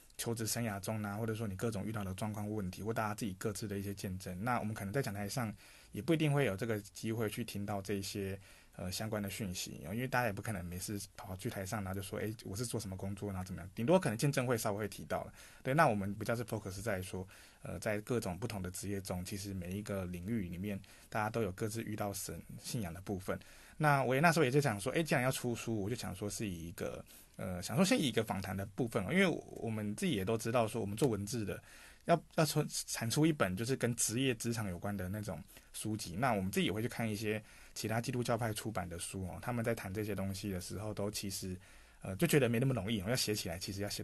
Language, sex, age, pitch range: Chinese, male, 20-39, 100-115 Hz